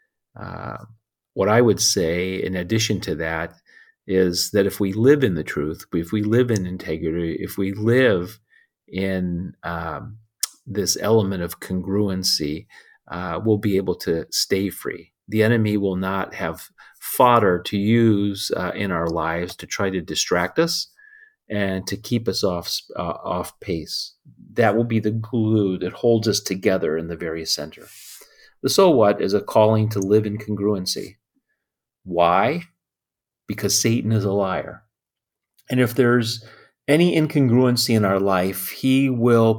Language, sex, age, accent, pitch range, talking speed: English, male, 40-59, American, 95-120 Hz, 155 wpm